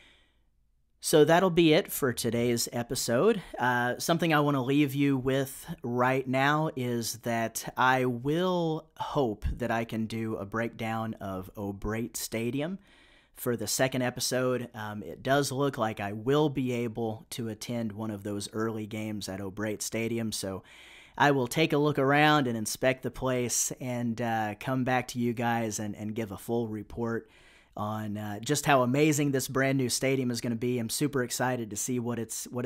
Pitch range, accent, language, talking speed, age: 115-145 Hz, American, English, 180 wpm, 30-49